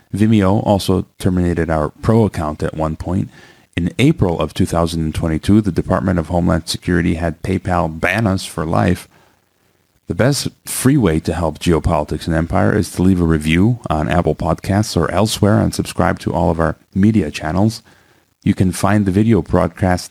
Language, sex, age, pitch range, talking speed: English, male, 40-59, 85-105 Hz, 170 wpm